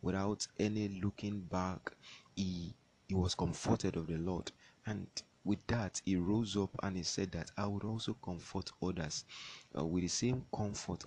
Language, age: English, 30-49